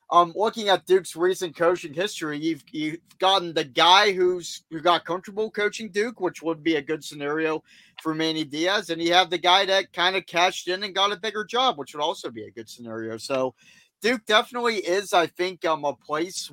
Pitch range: 150-180 Hz